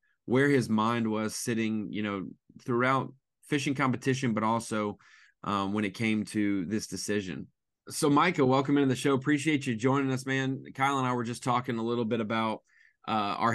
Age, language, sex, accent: 20-39, English, male, American